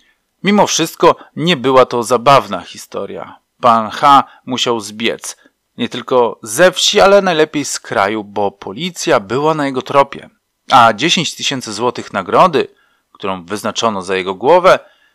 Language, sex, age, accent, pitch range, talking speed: Polish, male, 40-59, native, 100-150 Hz, 140 wpm